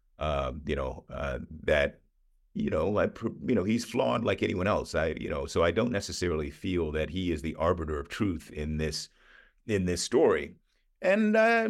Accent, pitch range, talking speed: American, 75-120 Hz, 185 wpm